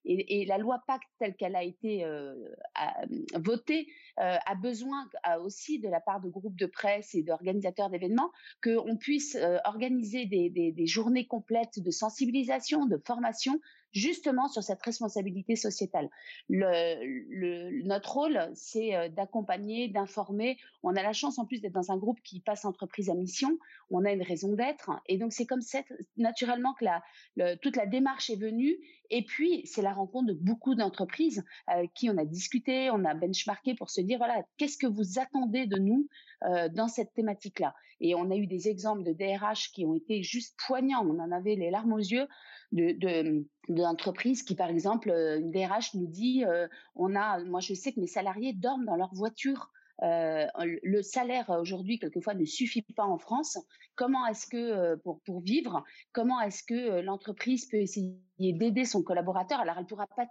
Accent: French